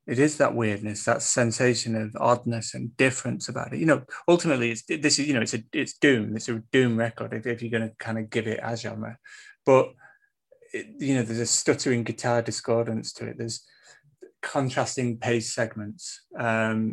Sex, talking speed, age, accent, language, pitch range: male, 200 wpm, 30-49, British, English, 115-140 Hz